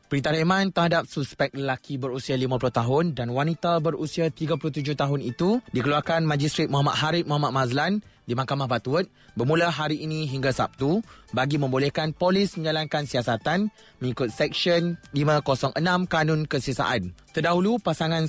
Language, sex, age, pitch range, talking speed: Malay, male, 20-39, 140-170 Hz, 130 wpm